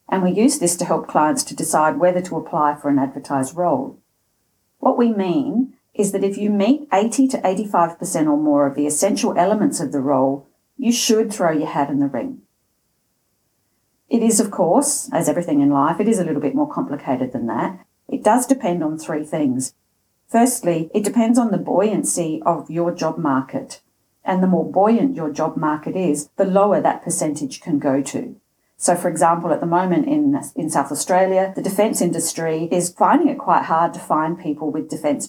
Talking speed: 195 wpm